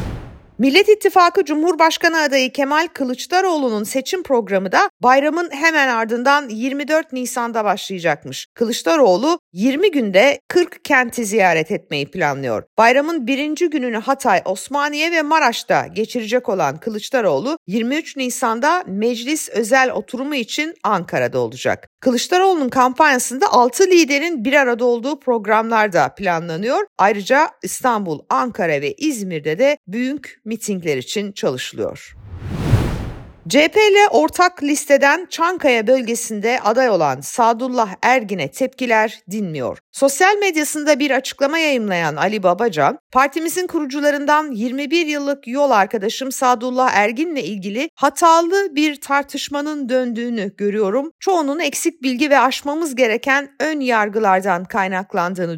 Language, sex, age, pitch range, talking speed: Turkish, female, 50-69, 220-300 Hz, 110 wpm